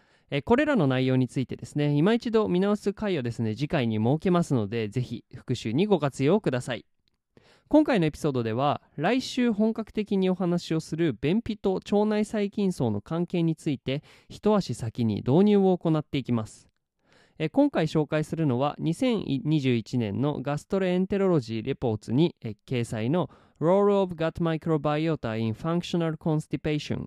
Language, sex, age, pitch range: Japanese, male, 20-39, 125-190 Hz